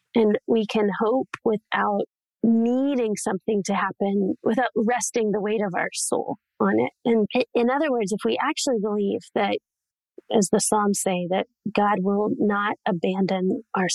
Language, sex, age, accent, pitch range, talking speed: English, female, 30-49, American, 200-245 Hz, 160 wpm